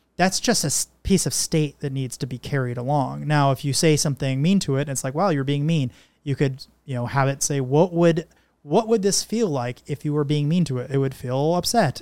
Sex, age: male, 30-49